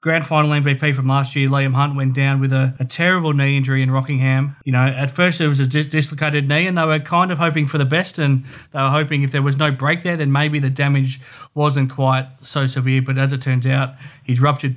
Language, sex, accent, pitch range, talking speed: English, male, Australian, 135-150 Hz, 250 wpm